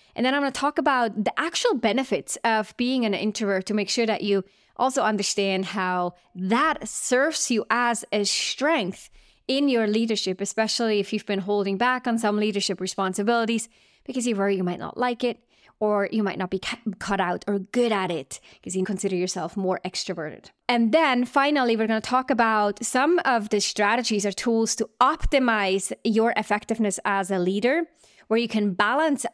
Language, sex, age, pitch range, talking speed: English, female, 20-39, 200-245 Hz, 185 wpm